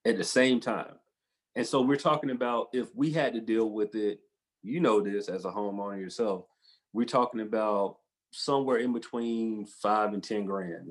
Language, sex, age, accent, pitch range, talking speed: English, male, 30-49, American, 105-135 Hz, 180 wpm